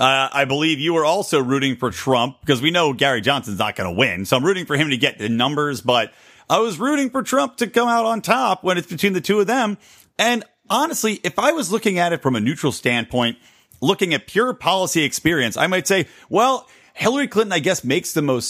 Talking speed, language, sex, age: 235 wpm, English, male, 40-59